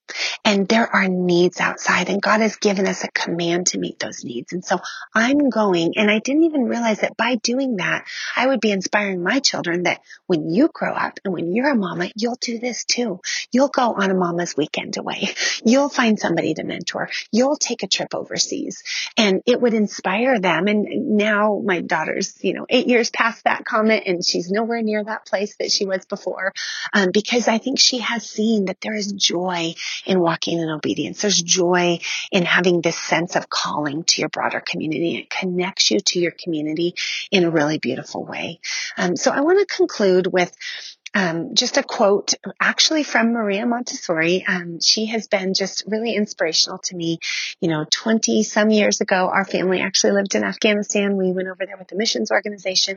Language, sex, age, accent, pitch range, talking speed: English, female, 30-49, American, 180-225 Hz, 195 wpm